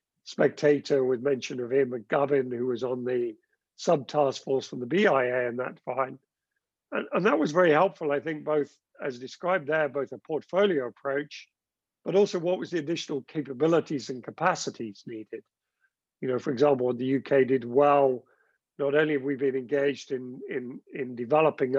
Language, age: English, 50-69